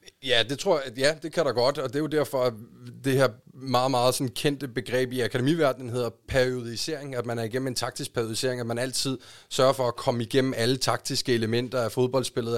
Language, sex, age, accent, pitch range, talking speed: Danish, male, 30-49, native, 120-135 Hz, 215 wpm